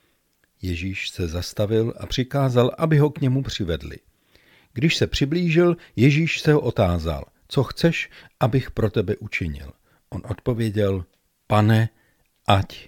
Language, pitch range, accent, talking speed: Czech, 90-125 Hz, native, 120 wpm